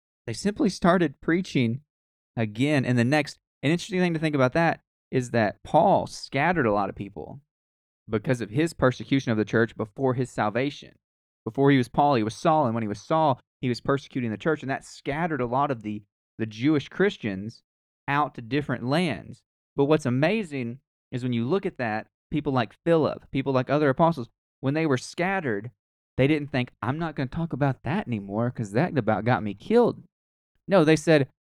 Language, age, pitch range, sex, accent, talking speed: English, 20-39, 115-155 Hz, male, American, 195 wpm